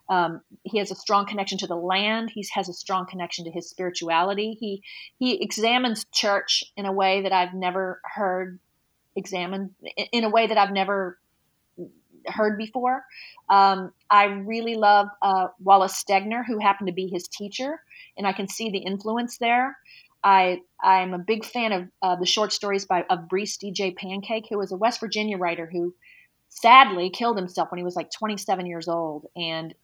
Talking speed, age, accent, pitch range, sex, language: 185 wpm, 30-49, American, 180-215 Hz, female, English